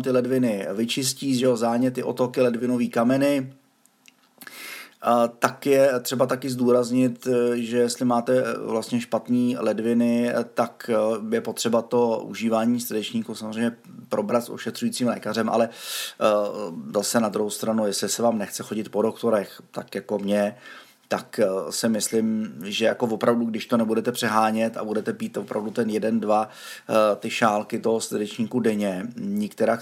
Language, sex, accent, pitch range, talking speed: Czech, male, native, 110-125 Hz, 140 wpm